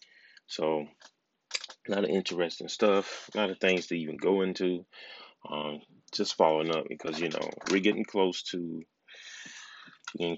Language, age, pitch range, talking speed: English, 30-49, 85-100 Hz, 150 wpm